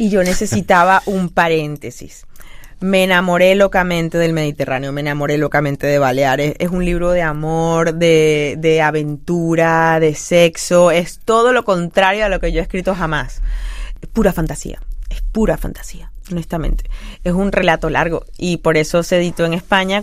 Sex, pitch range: female, 150-180 Hz